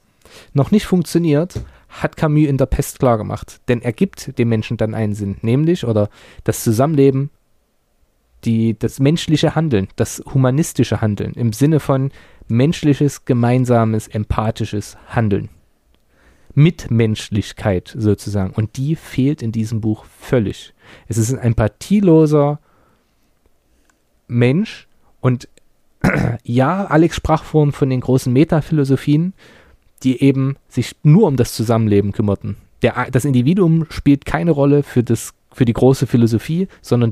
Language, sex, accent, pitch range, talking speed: German, male, German, 110-145 Hz, 130 wpm